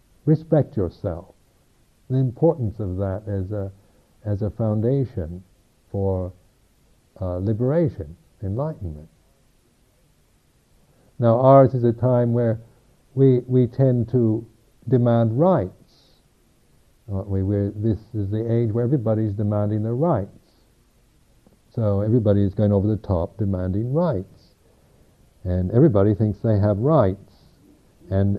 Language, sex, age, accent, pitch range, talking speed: English, male, 60-79, American, 100-135 Hz, 110 wpm